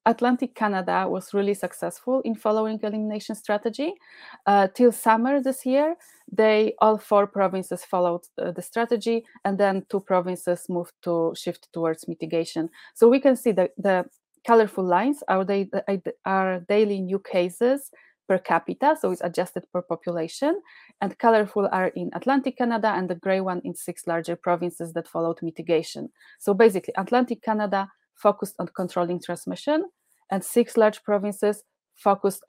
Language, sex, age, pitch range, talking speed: English, female, 30-49, 180-225 Hz, 150 wpm